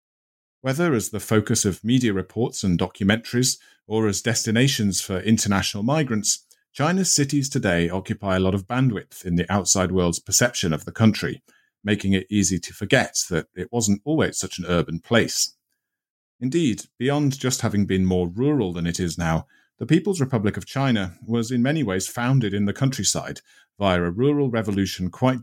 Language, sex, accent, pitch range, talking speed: English, male, British, 95-120 Hz, 170 wpm